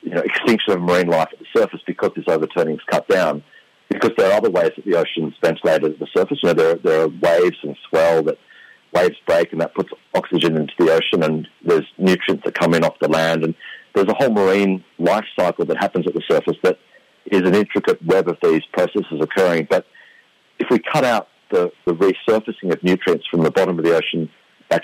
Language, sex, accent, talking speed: English, male, Australian, 225 wpm